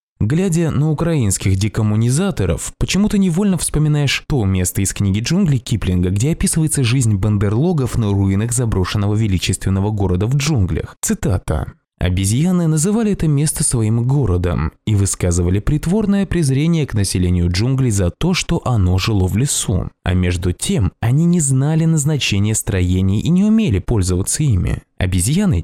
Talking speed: 140 wpm